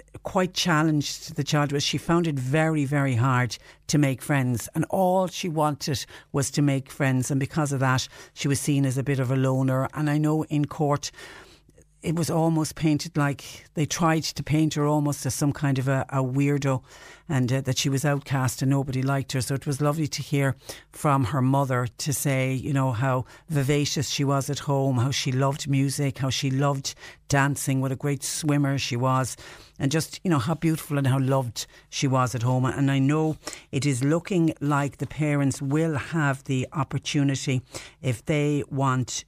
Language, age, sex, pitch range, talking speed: English, 60-79, female, 130-145 Hz, 200 wpm